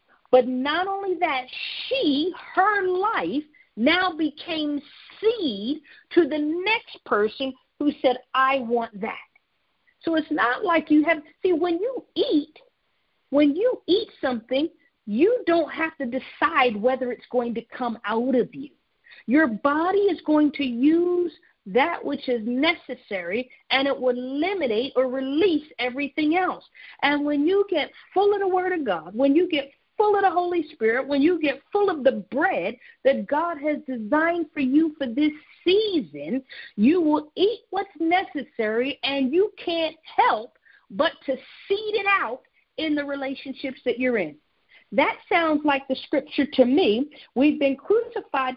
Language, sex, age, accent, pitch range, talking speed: English, female, 50-69, American, 260-350 Hz, 160 wpm